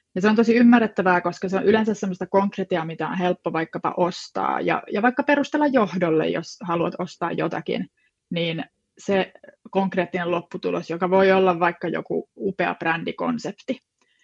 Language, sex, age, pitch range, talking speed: Finnish, female, 20-39, 175-220 Hz, 150 wpm